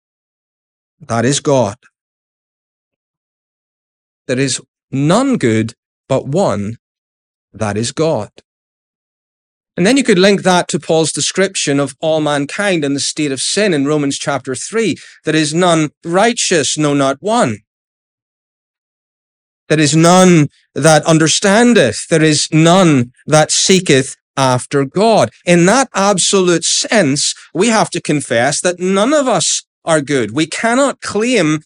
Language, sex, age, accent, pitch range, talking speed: English, male, 30-49, British, 140-195 Hz, 130 wpm